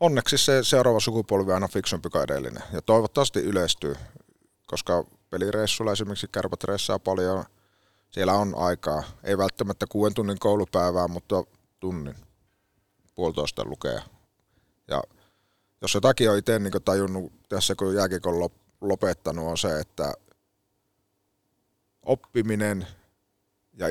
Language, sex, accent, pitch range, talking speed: Finnish, male, native, 95-110 Hz, 115 wpm